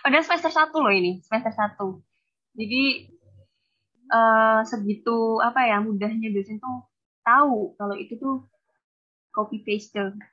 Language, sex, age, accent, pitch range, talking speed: Indonesian, female, 20-39, native, 205-250 Hz, 130 wpm